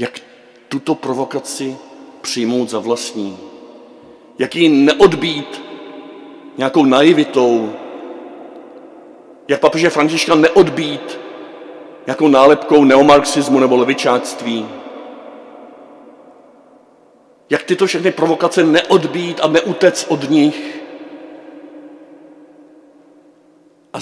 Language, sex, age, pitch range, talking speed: Czech, male, 50-69, 130-165 Hz, 75 wpm